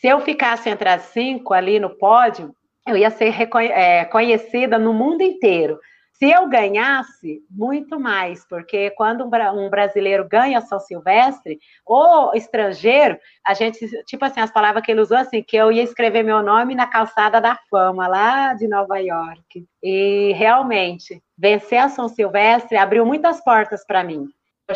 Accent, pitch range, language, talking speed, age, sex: Brazilian, 200-250 Hz, Portuguese, 170 wpm, 40-59, female